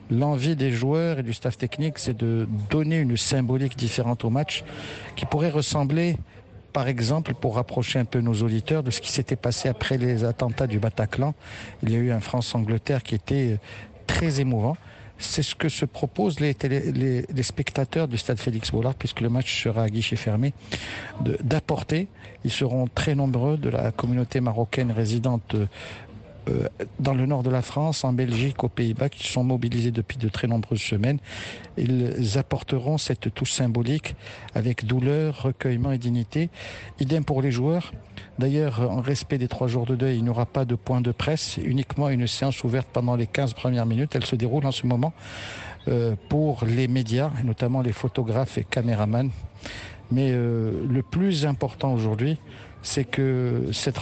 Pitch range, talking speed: 115-140 Hz, 175 wpm